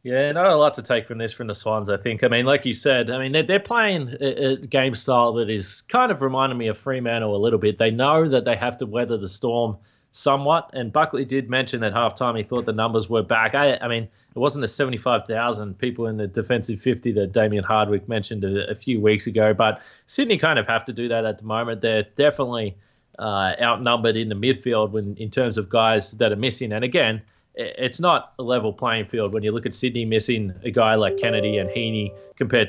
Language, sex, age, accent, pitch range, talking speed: English, male, 20-39, Australian, 110-130 Hz, 230 wpm